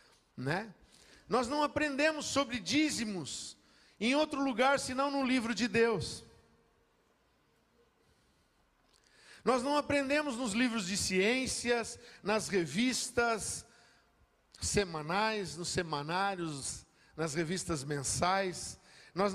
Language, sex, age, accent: Portuguese, male, 50-69, Brazilian